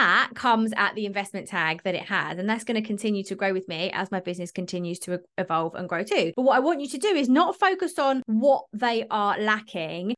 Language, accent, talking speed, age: English, British, 250 wpm, 20-39